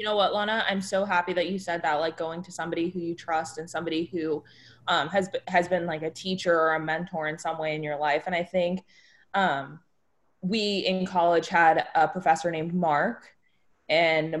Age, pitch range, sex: 20-39, 155-180 Hz, female